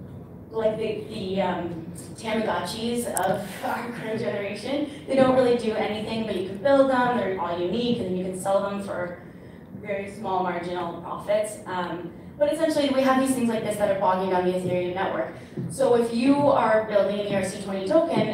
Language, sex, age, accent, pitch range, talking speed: English, female, 30-49, American, 185-230 Hz, 185 wpm